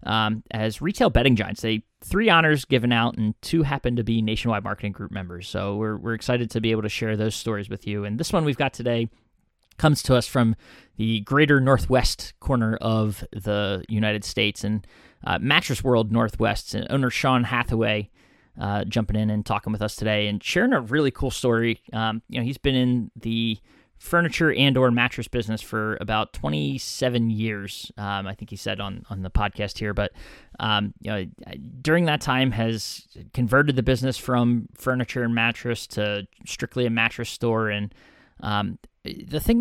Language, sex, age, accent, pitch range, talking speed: English, male, 20-39, American, 105-125 Hz, 185 wpm